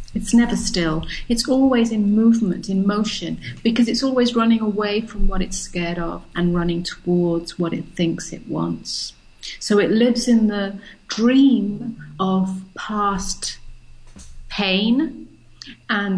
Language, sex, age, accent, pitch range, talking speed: English, female, 40-59, British, 180-230 Hz, 135 wpm